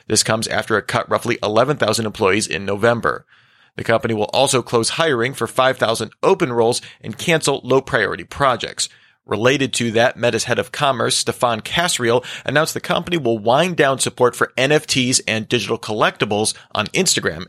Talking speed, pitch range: 160 wpm, 115-140 Hz